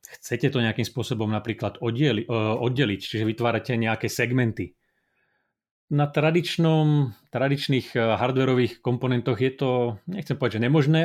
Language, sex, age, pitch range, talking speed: Slovak, male, 30-49, 115-130 Hz, 120 wpm